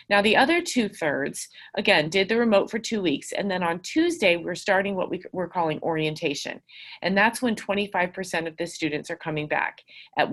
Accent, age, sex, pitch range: American, 30-49, female, 165-215 Hz